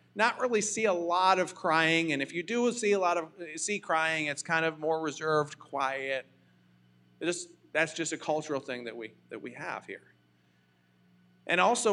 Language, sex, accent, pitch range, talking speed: English, male, American, 125-165 Hz, 185 wpm